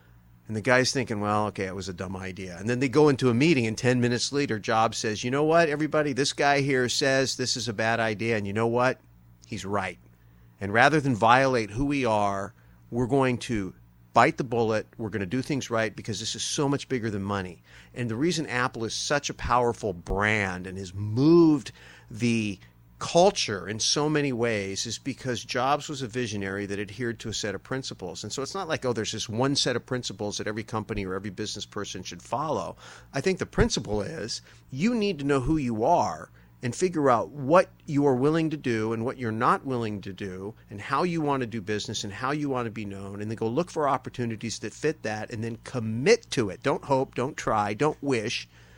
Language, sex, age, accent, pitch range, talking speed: English, male, 40-59, American, 105-145 Hz, 225 wpm